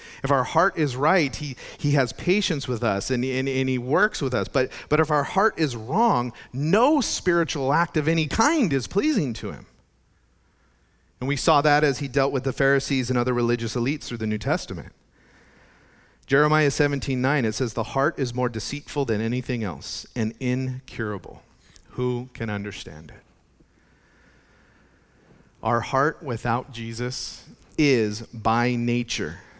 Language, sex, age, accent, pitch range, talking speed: English, male, 40-59, American, 105-140 Hz, 160 wpm